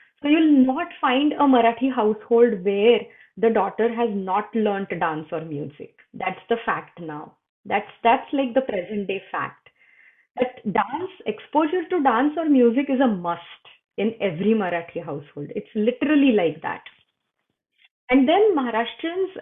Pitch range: 185-260 Hz